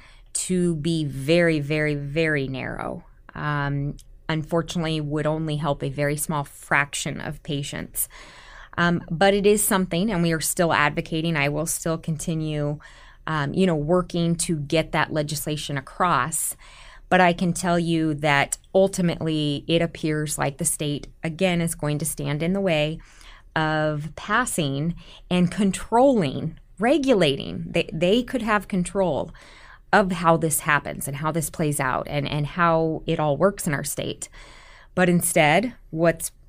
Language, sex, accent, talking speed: English, female, American, 150 wpm